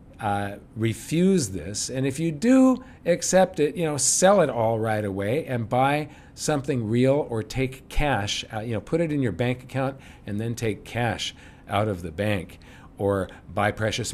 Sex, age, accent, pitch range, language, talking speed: male, 50-69, American, 105-150 Hz, English, 185 wpm